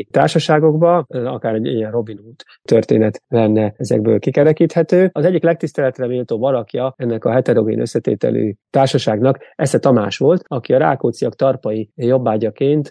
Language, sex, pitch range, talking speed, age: Hungarian, male, 115-155 Hz, 130 wpm, 30-49